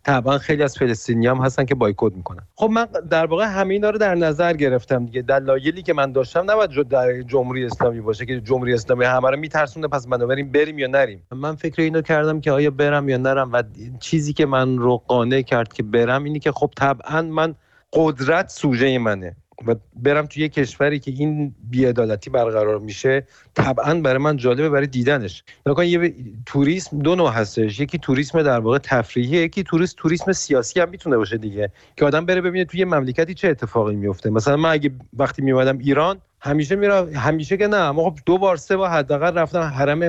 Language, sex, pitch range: Persian, male, 130-165 Hz